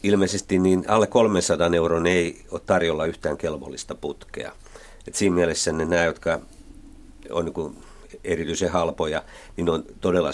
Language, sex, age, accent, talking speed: Finnish, male, 50-69, native, 135 wpm